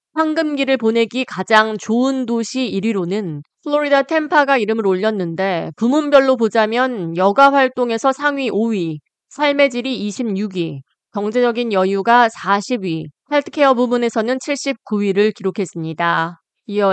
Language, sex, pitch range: Korean, female, 195-265 Hz